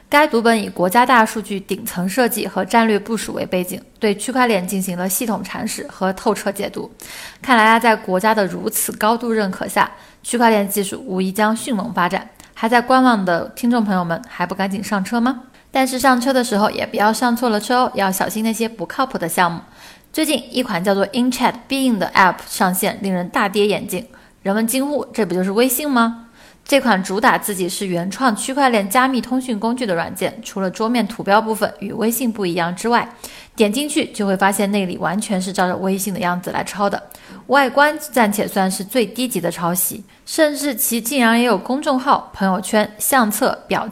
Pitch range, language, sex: 195-245 Hz, Chinese, female